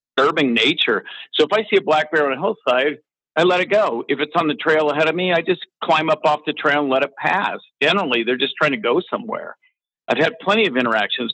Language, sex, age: English, male, 50-69